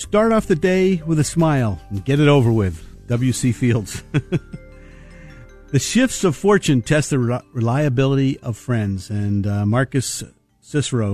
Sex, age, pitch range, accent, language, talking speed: male, 50-69, 115-150 Hz, American, English, 145 wpm